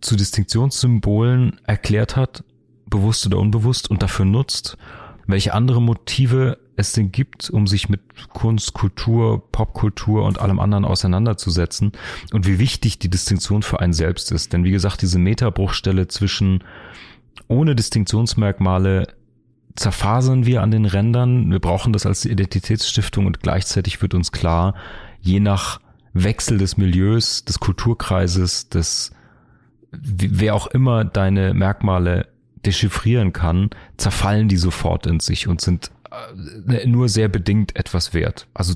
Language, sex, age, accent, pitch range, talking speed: German, male, 40-59, German, 95-115 Hz, 135 wpm